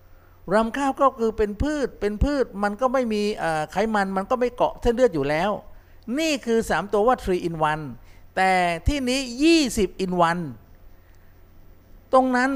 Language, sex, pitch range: Thai, male, 165-230 Hz